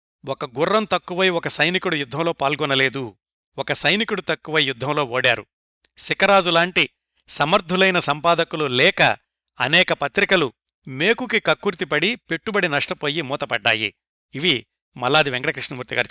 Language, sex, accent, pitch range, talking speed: Telugu, male, native, 135-185 Hz, 95 wpm